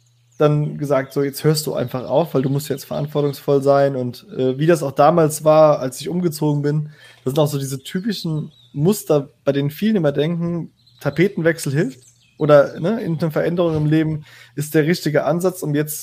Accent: German